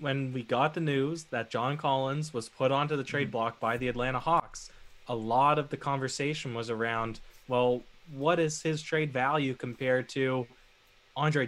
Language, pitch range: English, 120-145 Hz